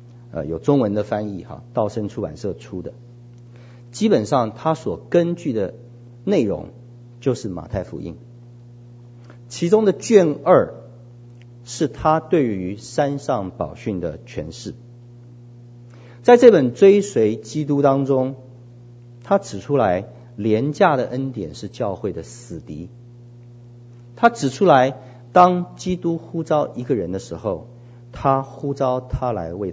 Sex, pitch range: male, 120-135 Hz